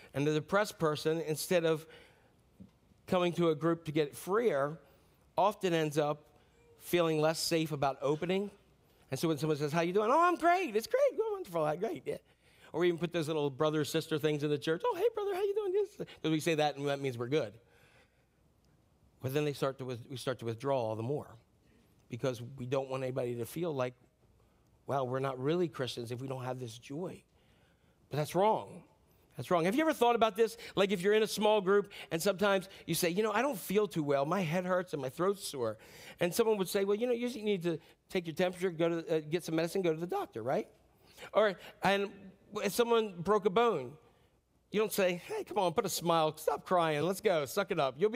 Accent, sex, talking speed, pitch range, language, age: American, male, 225 wpm, 150-210 Hz, English, 40-59